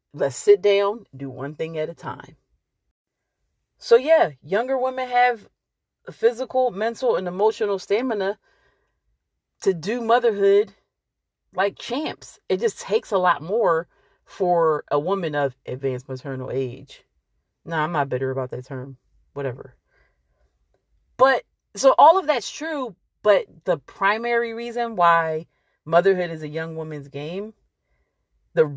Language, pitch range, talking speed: English, 160-245 Hz, 135 wpm